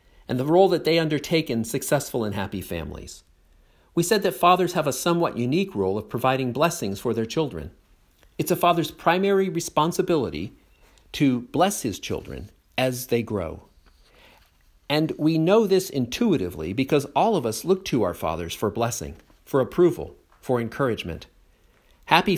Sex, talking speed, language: male, 155 wpm, English